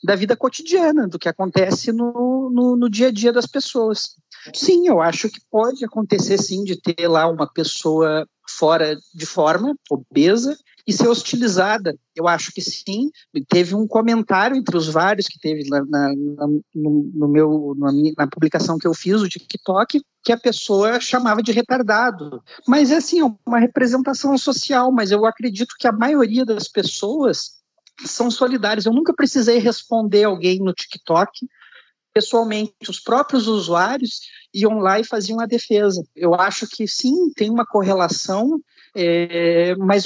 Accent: Brazilian